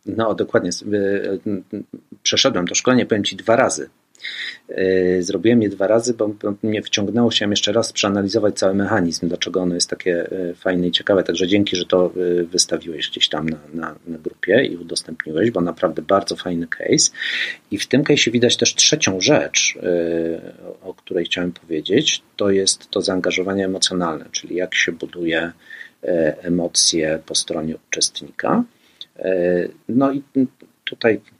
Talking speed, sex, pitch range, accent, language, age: 140 wpm, male, 90-105 Hz, native, Polish, 40-59